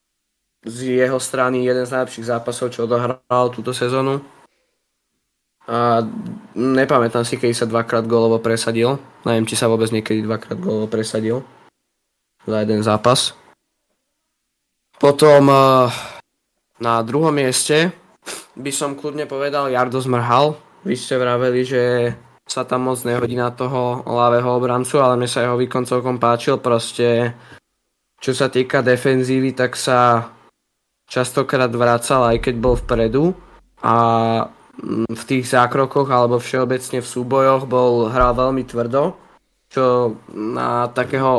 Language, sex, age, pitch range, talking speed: Slovak, male, 20-39, 120-130 Hz, 125 wpm